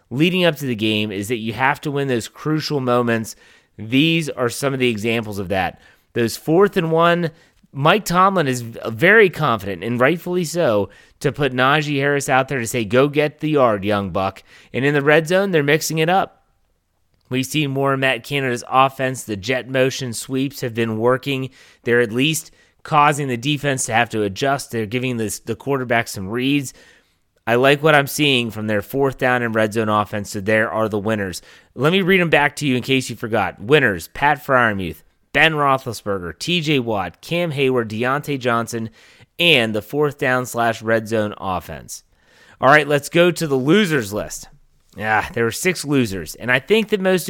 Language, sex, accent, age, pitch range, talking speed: English, male, American, 30-49, 115-150 Hz, 195 wpm